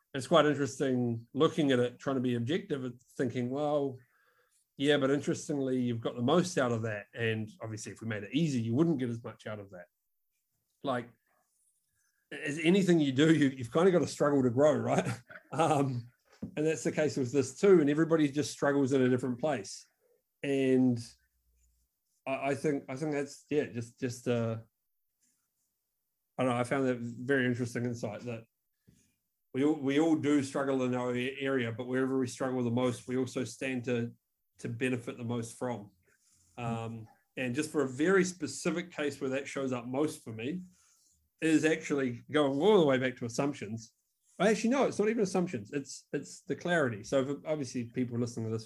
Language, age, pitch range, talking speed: English, 30-49, 120-150 Hz, 190 wpm